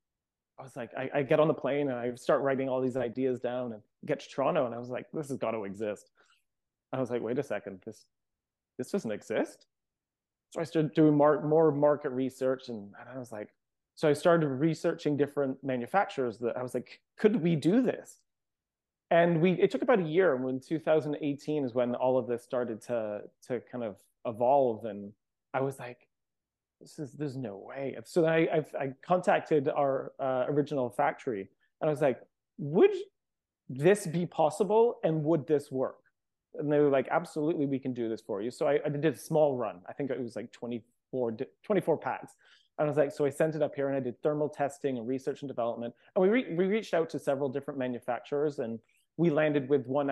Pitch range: 125-155 Hz